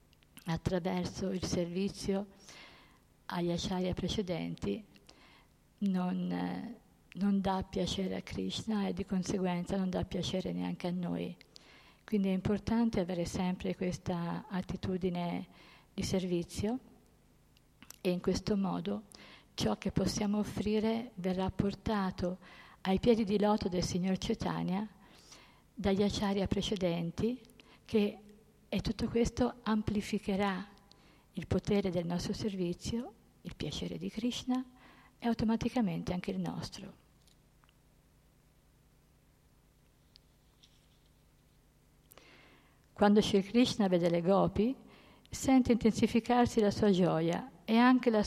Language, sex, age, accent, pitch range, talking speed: Italian, female, 50-69, native, 180-215 Hz, 105 wpm